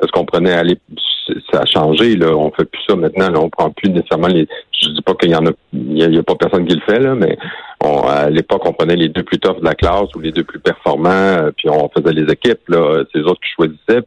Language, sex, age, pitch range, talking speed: French, male, 50-69, 80-100 Hz, 280 wpm